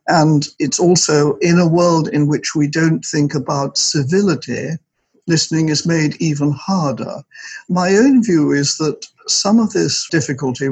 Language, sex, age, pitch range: English, male, 60-79, 135-170 Hz